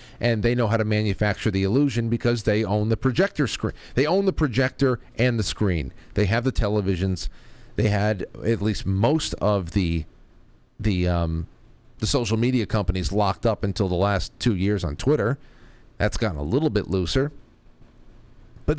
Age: 40-59